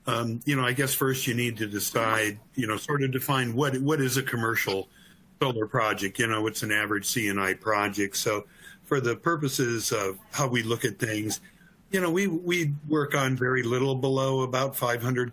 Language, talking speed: English, 195 wpm